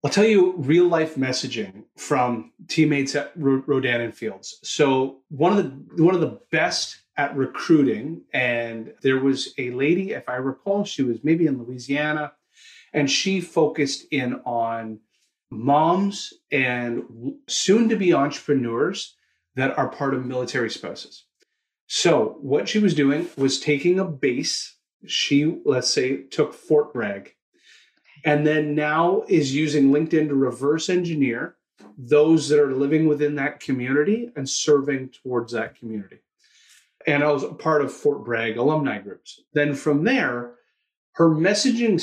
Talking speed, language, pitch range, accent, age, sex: 140 wpm, English, 130-165 Hz, American, 30-49, male